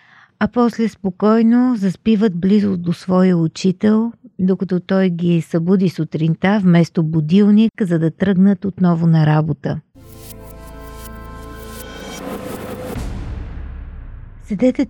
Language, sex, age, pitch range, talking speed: Bulgarian, female, 50-69, 175-225 Hz, 90 wpm